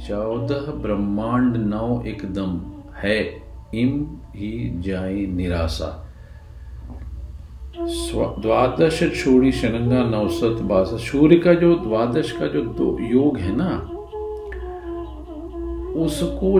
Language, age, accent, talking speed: Hindi, 50-69, native, 85 wpm